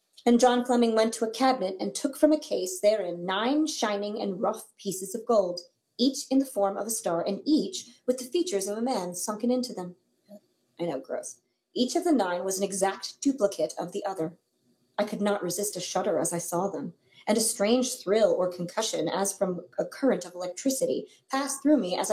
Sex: female